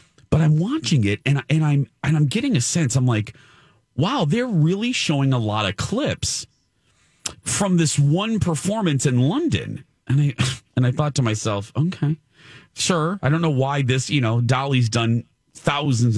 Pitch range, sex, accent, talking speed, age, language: 120-155 Hz, male, American, 175 wpm, 40-59, English